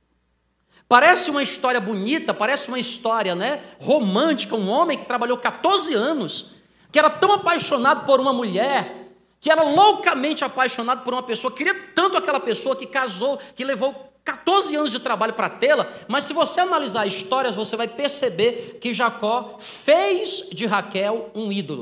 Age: 40-59